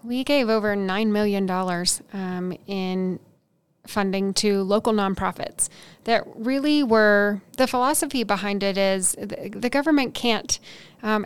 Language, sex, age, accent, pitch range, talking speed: English, female, 30-49, American, 185-215 Hz, 130 wpm